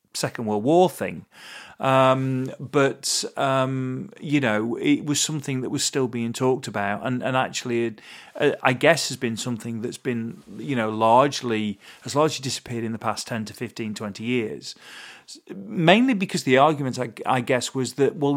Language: English